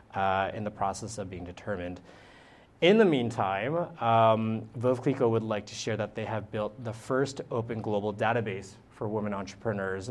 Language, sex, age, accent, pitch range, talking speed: English, male, 30-49, American, 105-120 Hz, 165 wpm